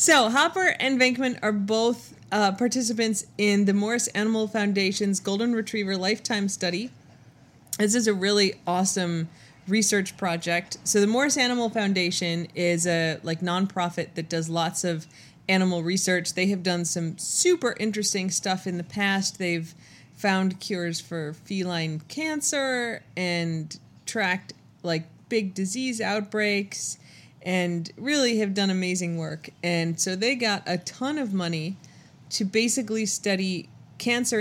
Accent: American